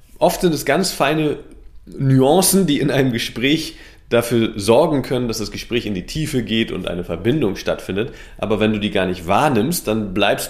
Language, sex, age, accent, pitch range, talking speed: German, male, 40-59, German, 100-130 Hz, 190 wpm